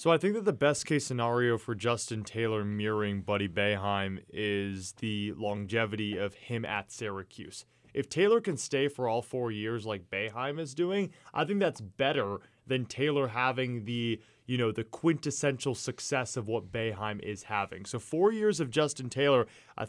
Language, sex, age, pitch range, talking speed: English, male, 20-39, 110-150 Hz, 175 wpm